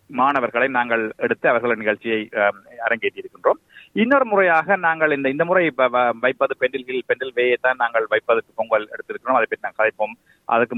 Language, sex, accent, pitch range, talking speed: Tamil, male, native, 130-185 Hz, 135 wpm